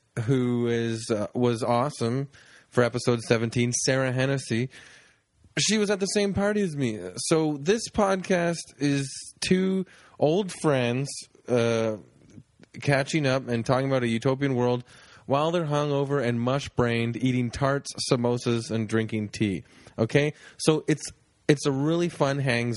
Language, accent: English, American